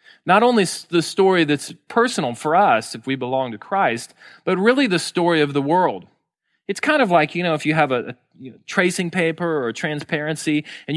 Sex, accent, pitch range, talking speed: male, American, 145-185 Hz, 195 wpm